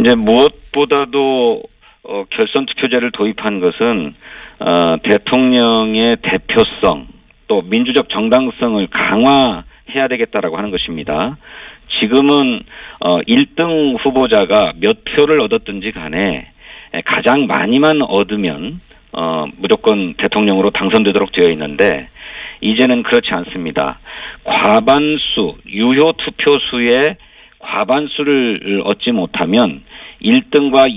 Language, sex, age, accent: Korean, male, 50-69, native